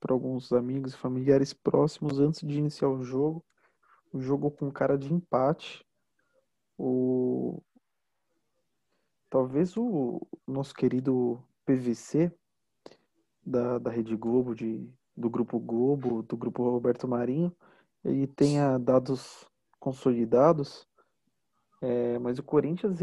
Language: Portuguese